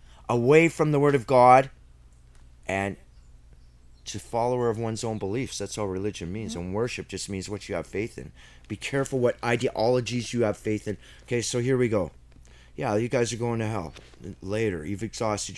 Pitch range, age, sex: 95-130 Hz, 30-49, male